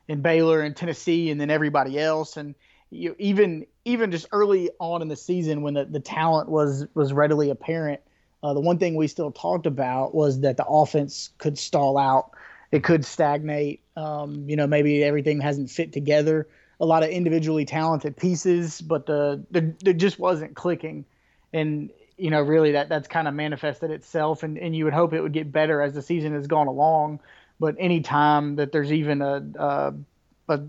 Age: 30-49